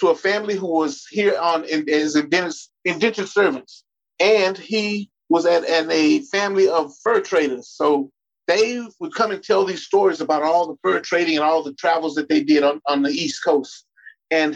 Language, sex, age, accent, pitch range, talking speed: English, male, 40-59, American, 150-210 Hz, 200 wpm